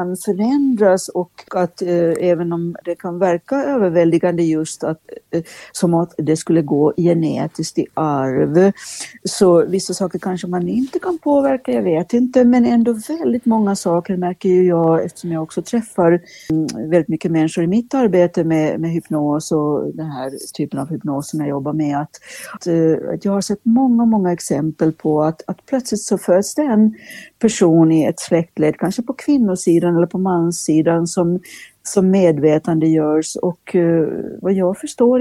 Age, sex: 60-79, female